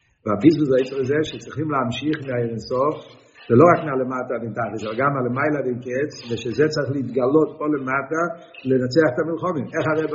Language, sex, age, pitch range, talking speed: Hebrew, male, 60-79, 140-220 Hz, 160 wpm